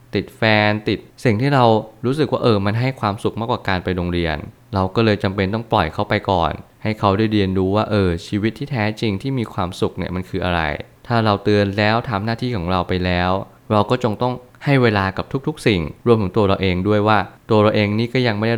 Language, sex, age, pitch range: Thai, male, 20-39, 95-115 Hz